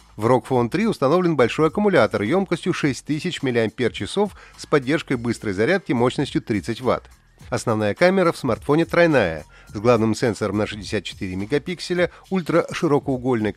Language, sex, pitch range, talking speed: Russian, male, 105-165 Hz, 125 wpm